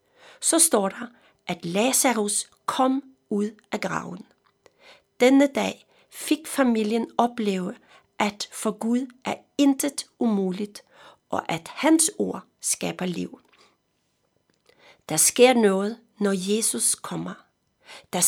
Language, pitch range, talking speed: Danish, 205-270 Hz, 110 wpm